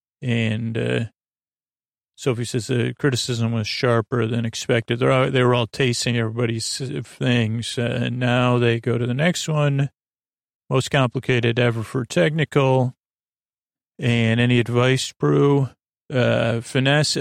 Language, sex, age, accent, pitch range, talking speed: English, male, 40-59, American, 120-130 Hz, 135 wpm